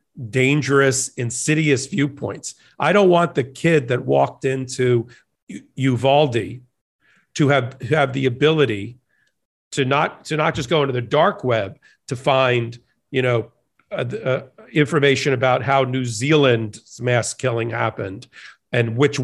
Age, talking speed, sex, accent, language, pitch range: 40-59, 135 wpm, male, American, English, 120-145 Hz